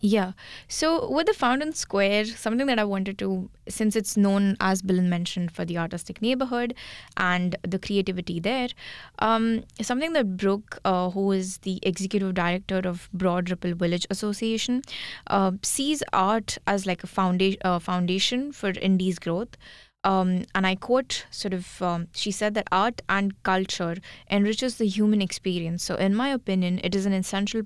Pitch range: 180-220 Hz